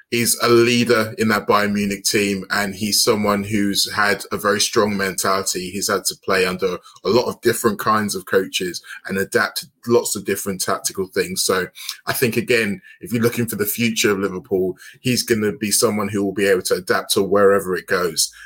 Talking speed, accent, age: 210 wpm, British, 20-39